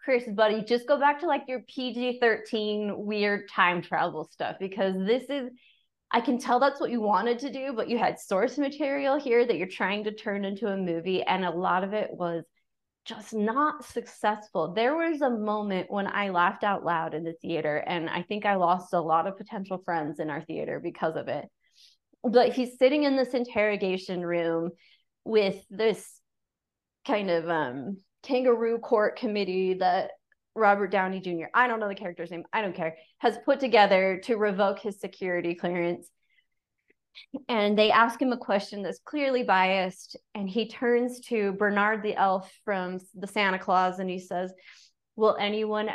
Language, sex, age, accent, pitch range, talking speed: English, female, 20-39, American, 185-240 Hz, 180 wpm